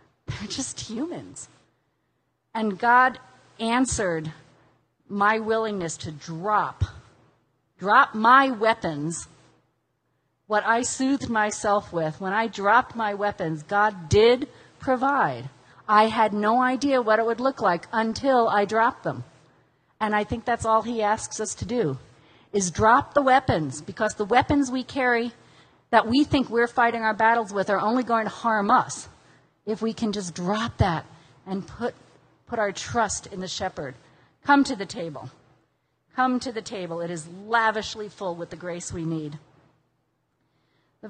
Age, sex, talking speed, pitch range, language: 40-59, female, 150 wpm, 170-235 Hz, English